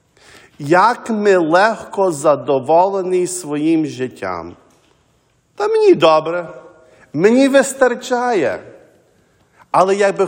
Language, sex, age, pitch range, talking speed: English, male, 50-69, 160-215 Hz, 75 wpm